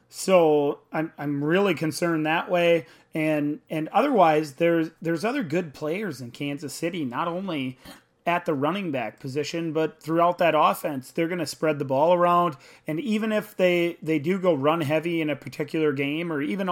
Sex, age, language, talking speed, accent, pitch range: male, 30-49, English, 180 wpm, American, 140-165 Hz